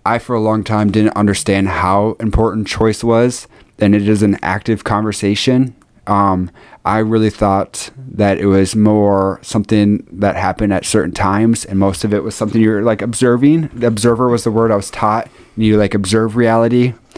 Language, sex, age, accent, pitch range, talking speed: English, male, 20-39, American, 100-115 Hz, 185 wpm